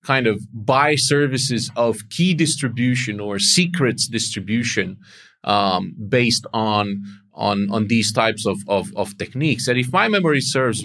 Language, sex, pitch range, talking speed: English, male, 110-140 Hz, 145 wpm